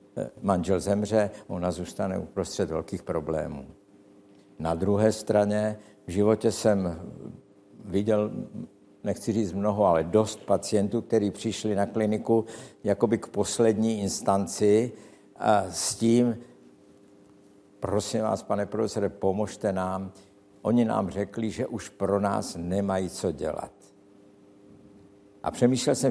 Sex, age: male, 60-79